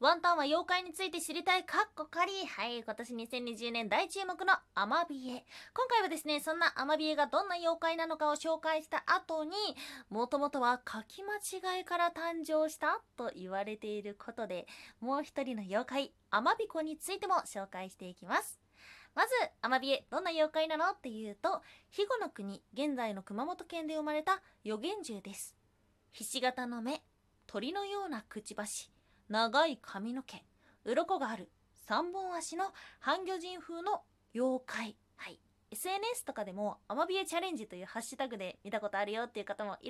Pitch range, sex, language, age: 220-340 Hz, female, Japanese, 20-39